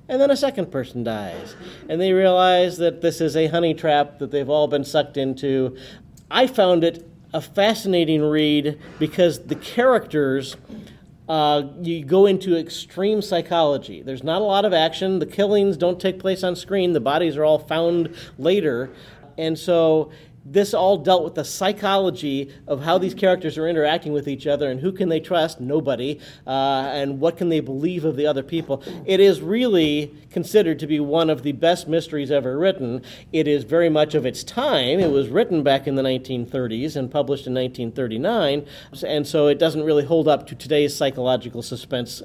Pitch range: 140-170 Hz